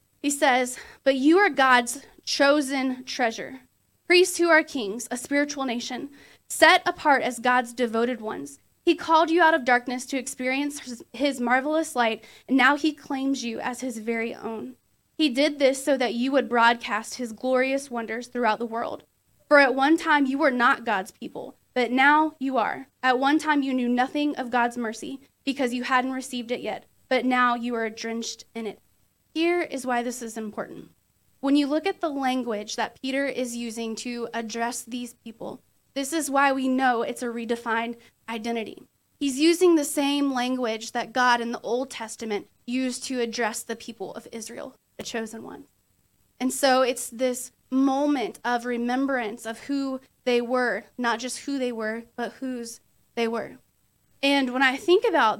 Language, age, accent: English, 20-39, American